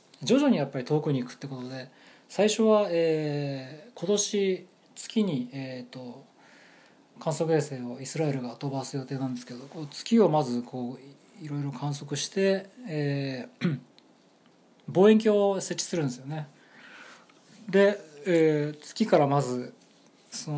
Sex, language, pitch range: male, Japanese, 130-185 Hz